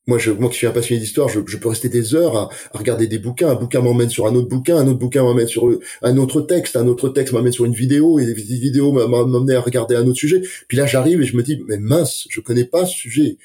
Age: 30-49